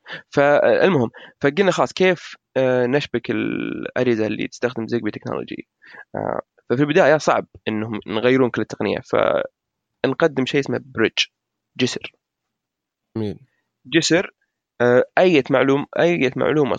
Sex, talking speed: male, 95 wpm